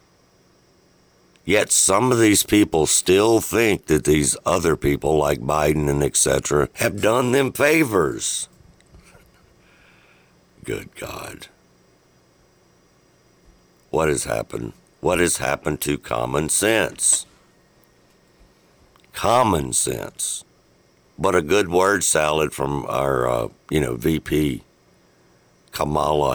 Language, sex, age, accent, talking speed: English, male, 60-79, American, 100 wpm